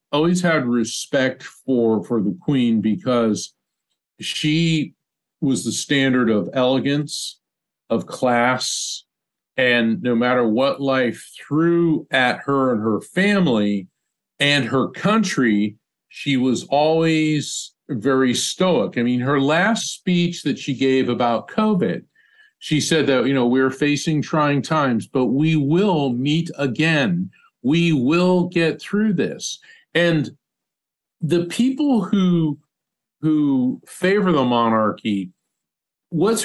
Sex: male